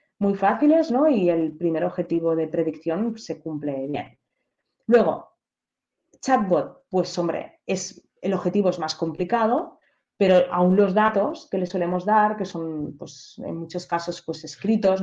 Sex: female